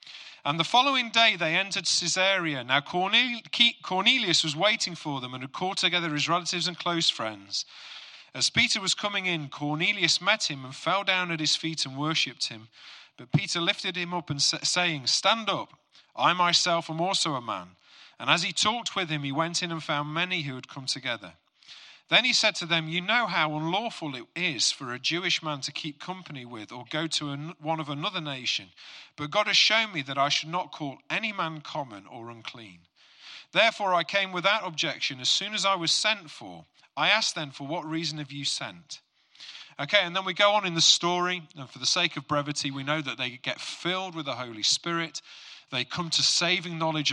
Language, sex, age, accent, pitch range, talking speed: English, male, 40-59, British, 140-185 Hz, 205 wpm